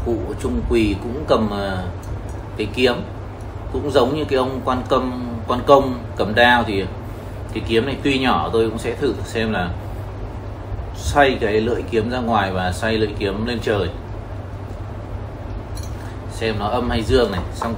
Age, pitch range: 20-39, 100-110 Hz